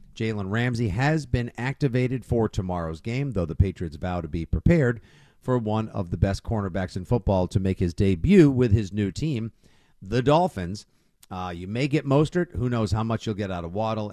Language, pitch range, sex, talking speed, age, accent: English, 105-130 Hz, male, 200 wpm, 50-69, American